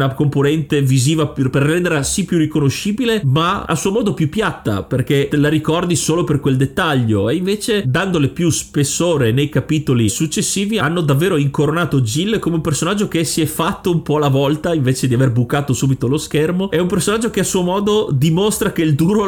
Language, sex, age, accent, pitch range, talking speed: Italian, male, 30-49, native, 130-180 Hz, 200 wpm